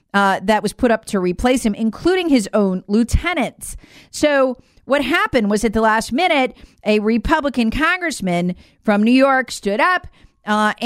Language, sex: English, female